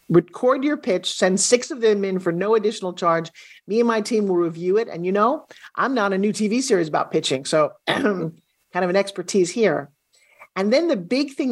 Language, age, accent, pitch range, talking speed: English, 50-69, American, 175-220 Hz, 215 wpm